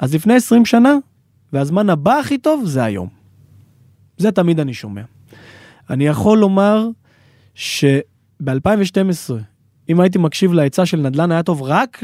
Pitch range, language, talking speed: 125-175 Hz, Hebrew, 135 wpm